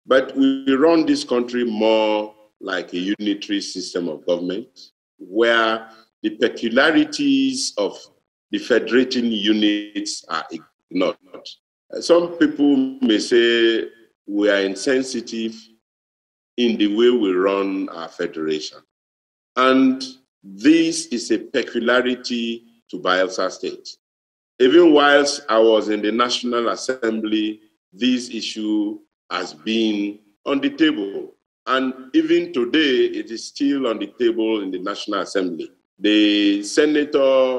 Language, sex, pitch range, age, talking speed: English, male, 105-165 Hz, 50-69, 115 wpm